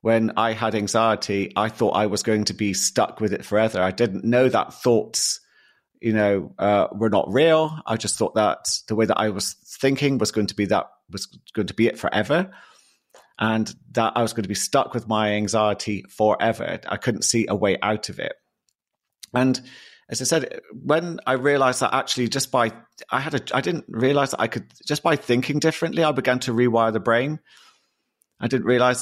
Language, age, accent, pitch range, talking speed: English, 30-49, British, 110-140 Hz, 205 wpm